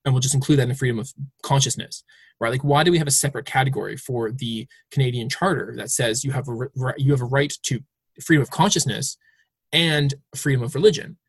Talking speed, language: 220 wpm, English